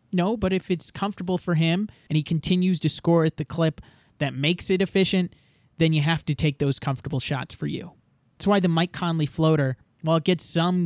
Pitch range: 145-190 Hz